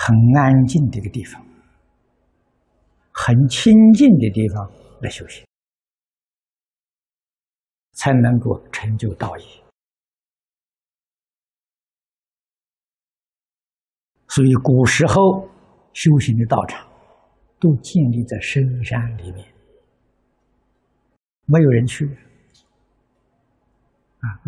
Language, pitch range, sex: Chinese, 115-145 Hz, male